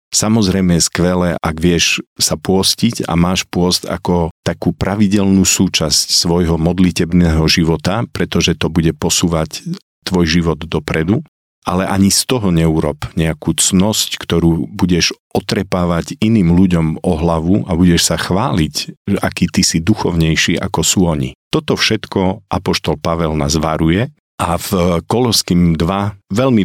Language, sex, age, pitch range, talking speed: Slovak, male, 50-69, 80-95 Hz, 135 wpm